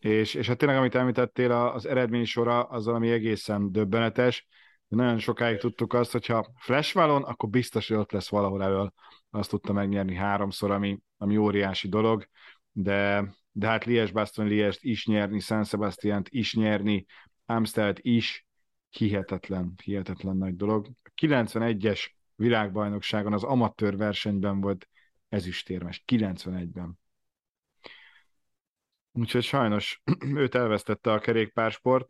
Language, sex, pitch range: Hungarian, male, 100-115 Hz